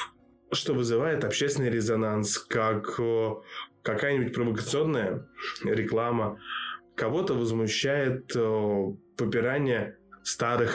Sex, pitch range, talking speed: male, 115-150 Hz, 65 wpm